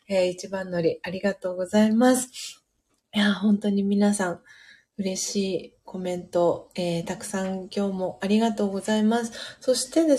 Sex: female